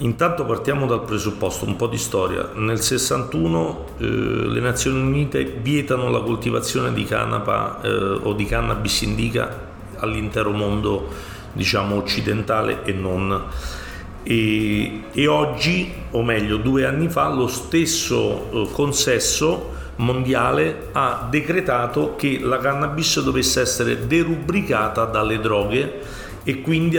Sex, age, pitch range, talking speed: male, 40-59, 105-135 Hz, 120 wpm